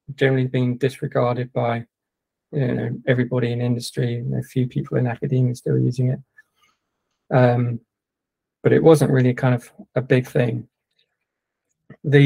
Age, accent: 20-39, British